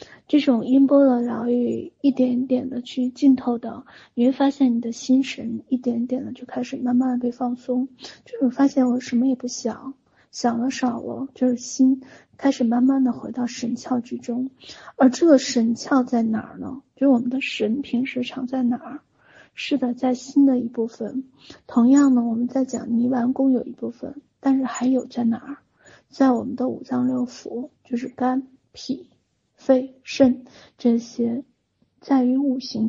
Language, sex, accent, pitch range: Chinese, female, native, 245-270 Hz